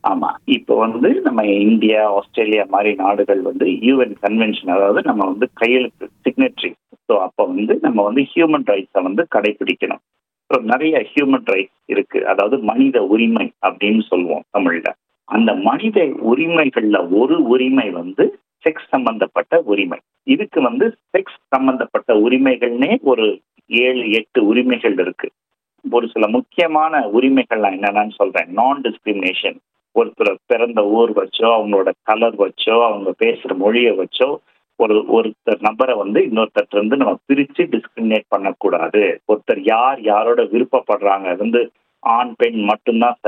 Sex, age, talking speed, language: male, 50-69, 120 wpm, Tamil